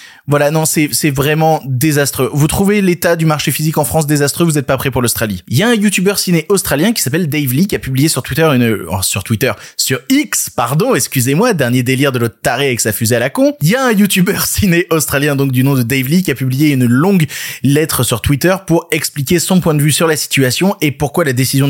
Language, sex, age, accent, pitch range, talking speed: French, male, 20-39, French, 135-170 Hz, 250 wpm